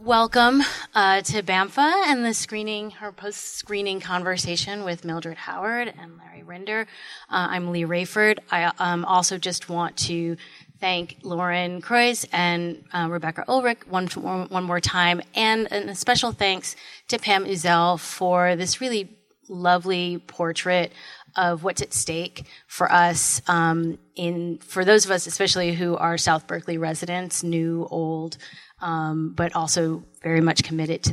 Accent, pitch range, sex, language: American, 170-200 Hz, female, English